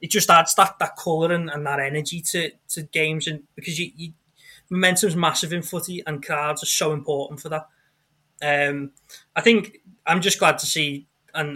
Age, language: 20-39, English